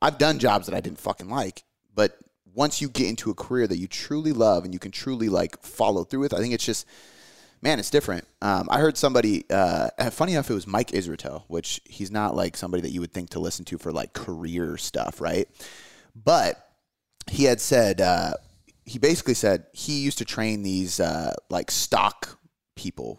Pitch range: 90-120 Hz